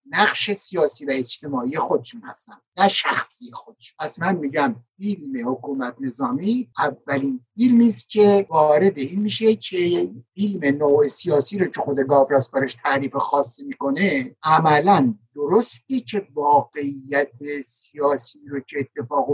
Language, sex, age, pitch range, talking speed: Persian, male, 60-79, 145-205 Hz, 130 wpm